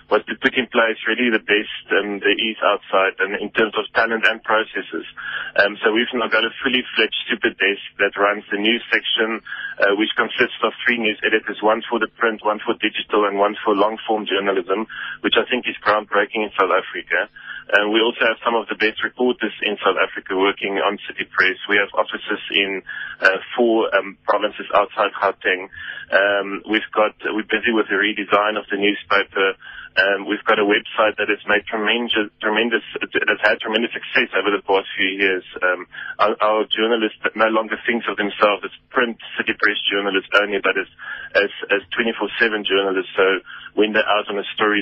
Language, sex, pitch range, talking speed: English, male, 100-115 Hz, 195 wpm